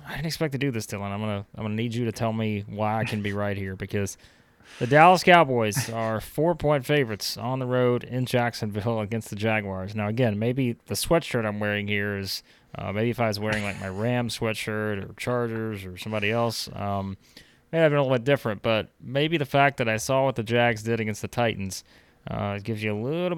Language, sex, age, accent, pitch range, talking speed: English, male, 20-39, American, 105-135 Hz, 230 wpm